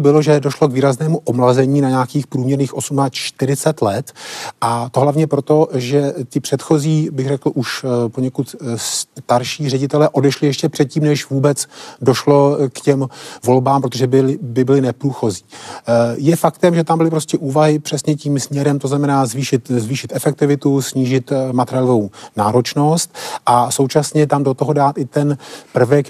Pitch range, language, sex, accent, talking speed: 130-150 Hz, Czech, male, native, 150 wpm